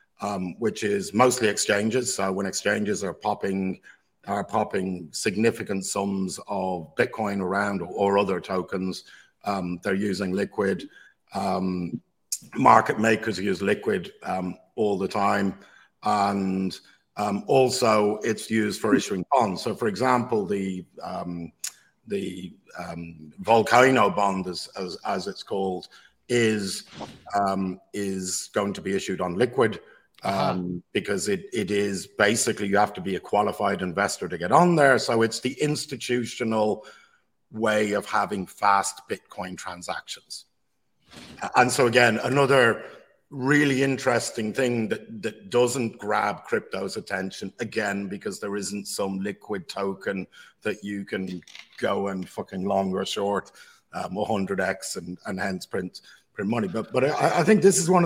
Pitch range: 95-120 Hz